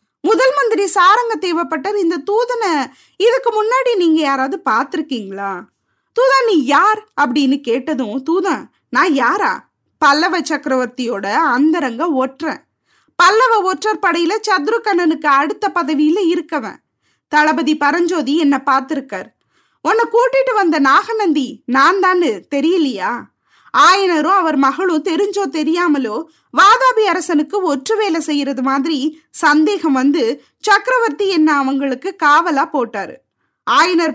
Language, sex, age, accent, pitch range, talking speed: Tamil, female, 20-39, native, 285-390 Hz, 100 wpm